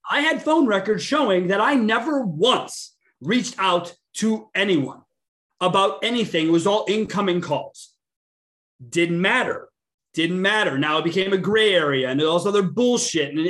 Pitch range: 155-210 Hz